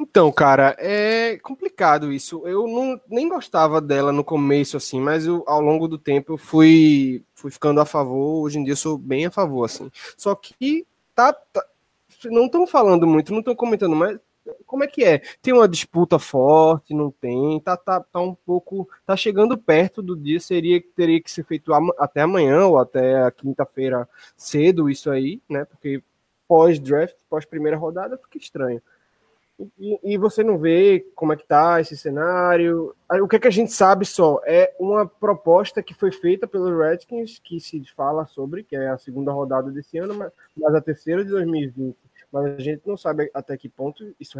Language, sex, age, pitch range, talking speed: Portuguese, male, 20-39, 140-185 Hz, 190 wpm